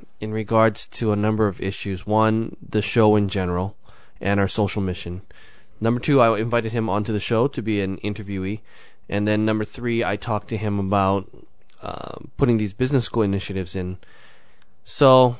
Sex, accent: male, American